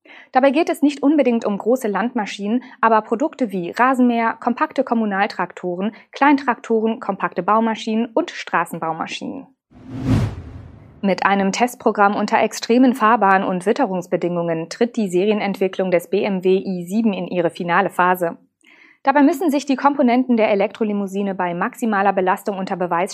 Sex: female